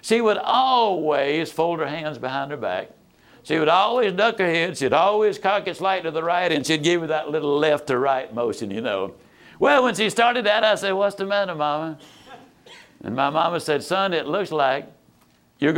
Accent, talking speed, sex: American, 210 wpm, male